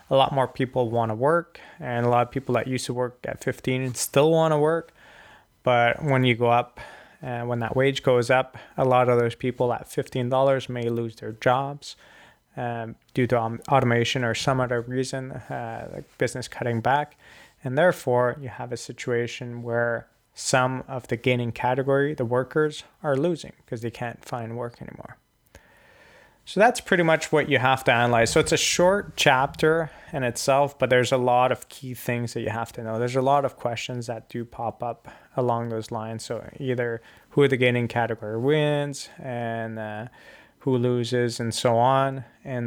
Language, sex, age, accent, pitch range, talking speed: English, male, 20-39, American, 120-135 Hz, 195 wpm